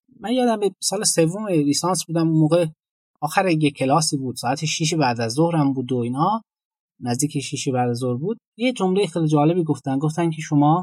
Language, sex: Persian, male